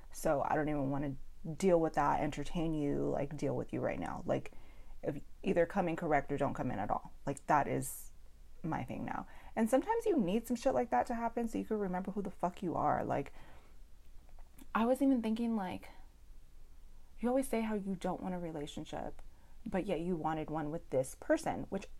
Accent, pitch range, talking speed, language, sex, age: American, 130-185 Hz, 210 wpm, English, female, 30-49